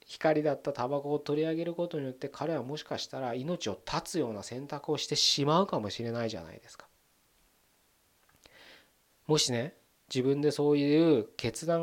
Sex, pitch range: male, 115-155 Hz